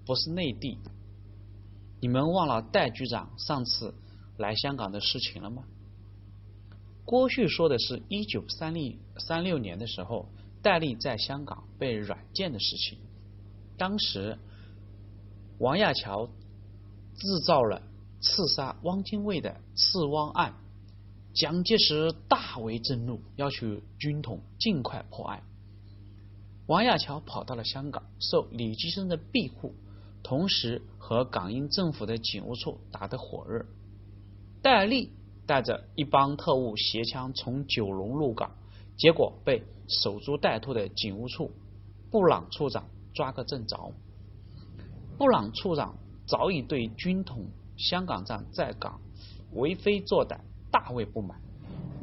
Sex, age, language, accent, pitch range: male, 30-49, Chinese, native, 100-140 Hz